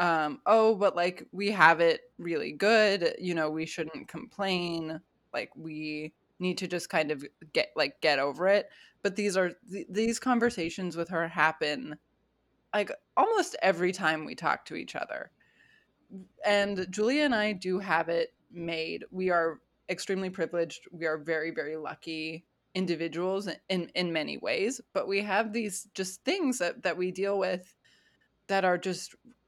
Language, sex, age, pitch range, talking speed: English, female, 20-39, 165-200 Hz, 165 wpm